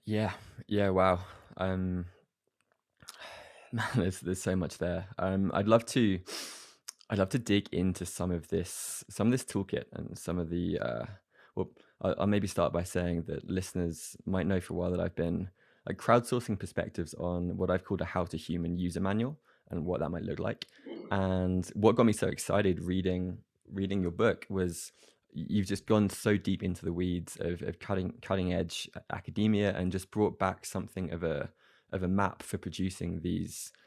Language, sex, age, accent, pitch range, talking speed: English, male, 20-39, British, 90-100 Hz, 185 wpm